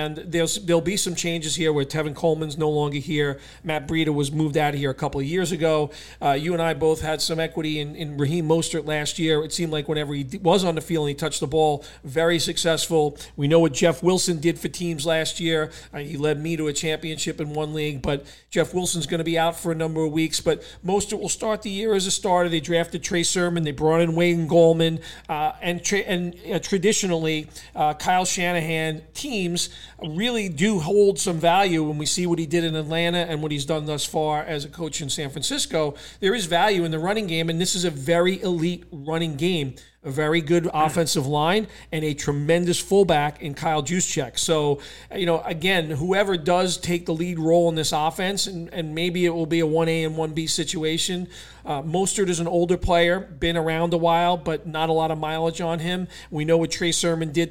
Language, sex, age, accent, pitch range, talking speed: English, male, 40-59, American, 155-175 Hz, 225 wpm